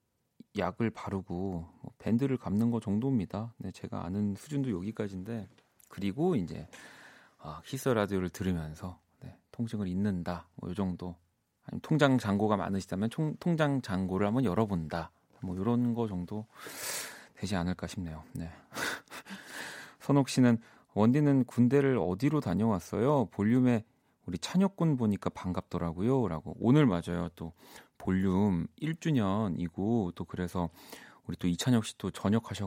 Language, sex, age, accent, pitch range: Korean, male, 40-59, native, 90-125 Hz